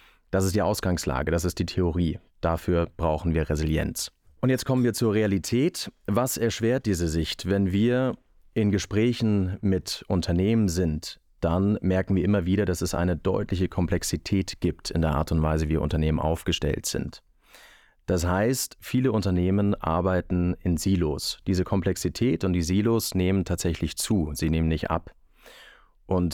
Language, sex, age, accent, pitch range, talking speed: German, male, 30-49, German, 80-100 Hz, 155 wpm